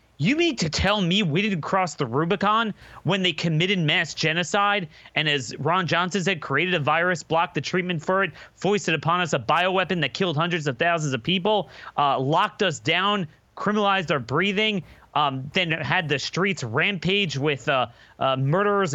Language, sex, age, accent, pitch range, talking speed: English, male, 30-49, American, 155-205 Hz, 180 wpm